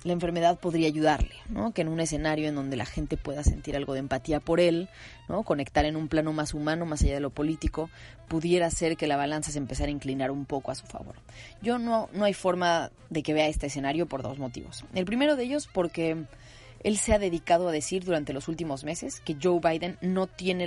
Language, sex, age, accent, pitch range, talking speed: Spanish, female, 30-49, Mexican, 145-175 Hz, 230 wpm